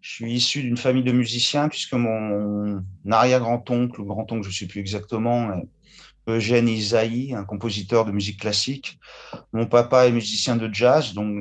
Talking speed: 175 wpm